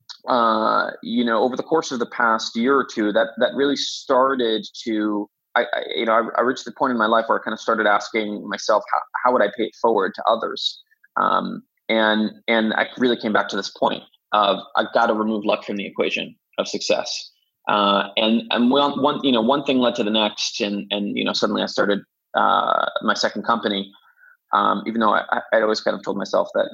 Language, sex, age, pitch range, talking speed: English, male, 20-39, 105-145 Hz, 225 wpm